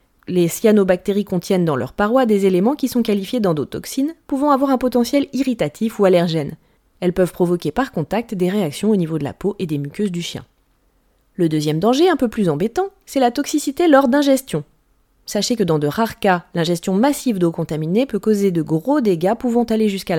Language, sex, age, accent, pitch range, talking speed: French, female, 20-39, French, 170-230 Hz, 195 wpm